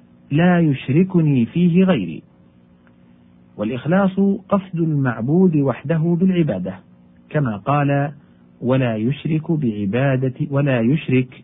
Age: 50-69